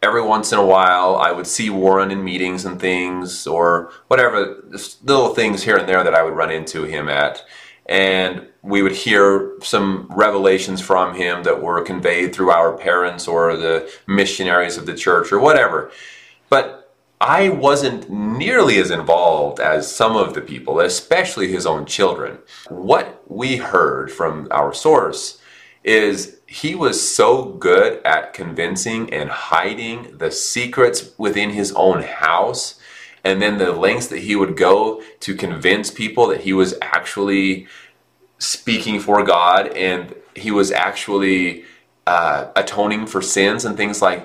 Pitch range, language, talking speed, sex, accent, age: 95-145 Hz, English, 155 wpm, male, American, 30-49